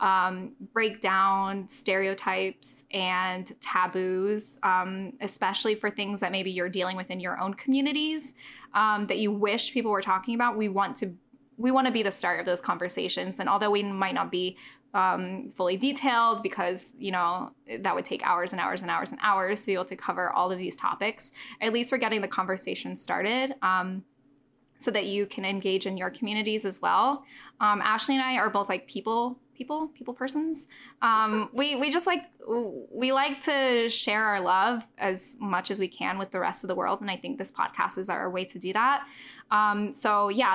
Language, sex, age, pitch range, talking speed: English, female, 10-29, 190-240 Hz, 200 wpm